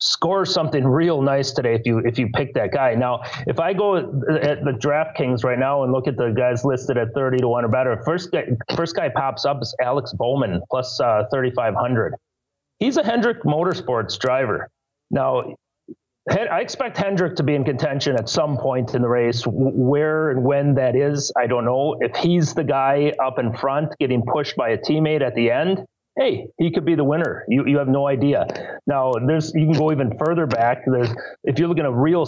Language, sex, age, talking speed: English, male, 30-49, 215 wpm